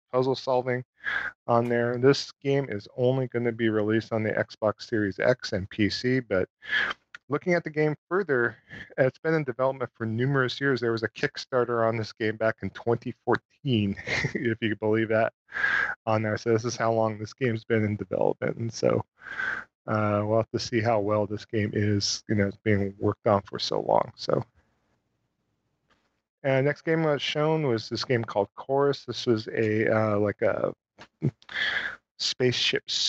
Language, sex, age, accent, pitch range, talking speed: English, male, 40-59, American, 110-125 Hz, 180 wpm